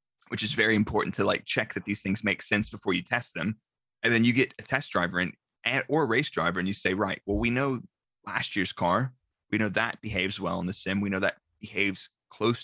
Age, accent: 30-49, American